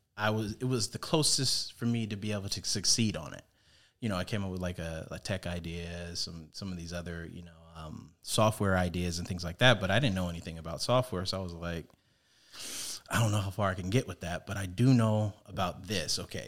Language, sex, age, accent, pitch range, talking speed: English, male, 30-49, American, 95-120 Hz, 250 wpm